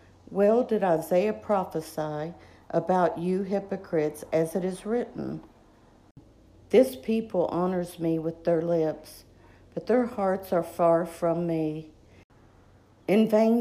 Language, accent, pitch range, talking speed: English, American, 160-205 Hz, 120 wpm